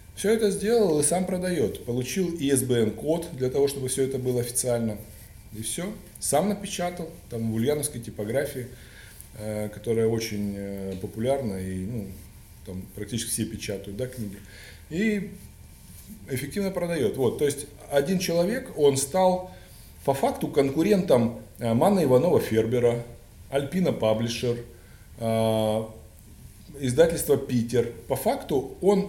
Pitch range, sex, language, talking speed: 110-150 Hz, male, Russian, 120 wpm